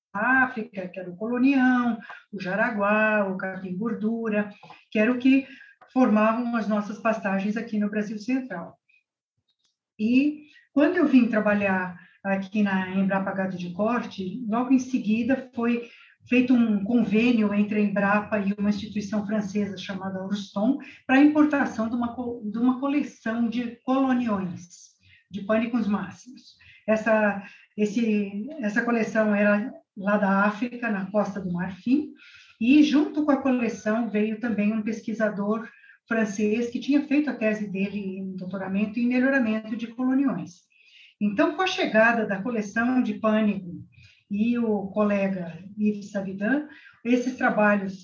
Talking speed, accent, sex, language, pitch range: 140 wpm, Brazilian, female, Portuguese, 205-245 Hz